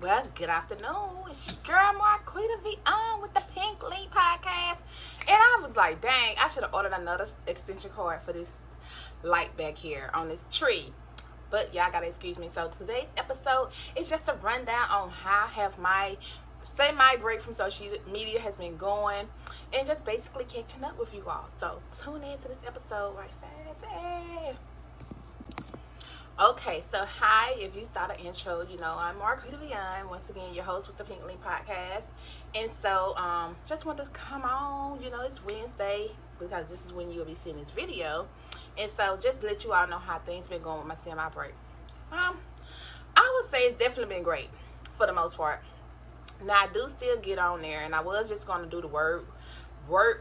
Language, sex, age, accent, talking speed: English, female, 20-39, American, 190 wpm